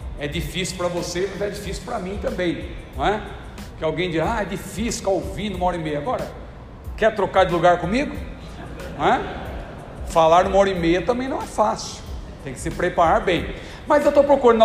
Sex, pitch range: male, 170-220 Hz